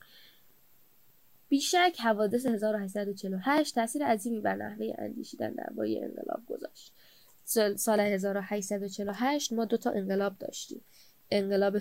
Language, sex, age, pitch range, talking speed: Persian, female, 10-29, 200-260 Hz, 90 wpm